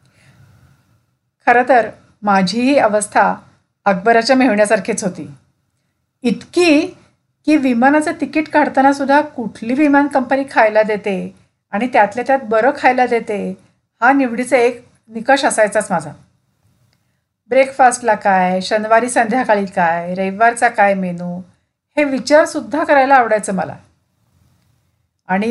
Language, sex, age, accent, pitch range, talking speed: Marathi, female, 50-69, native, 200-270 Hz, 100 wpm